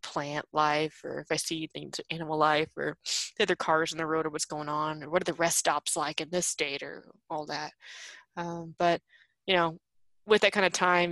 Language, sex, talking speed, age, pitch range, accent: English, female, 225 wpm, 20-39, 155-180 Hz, American